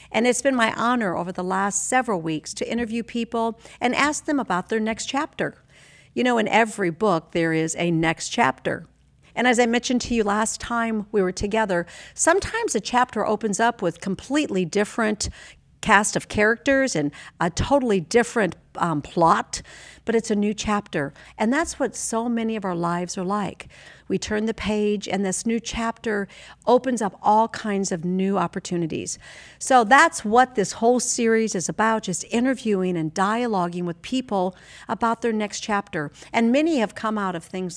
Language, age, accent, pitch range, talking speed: English, 50-69, American, 185-235 Hz, 180 wpm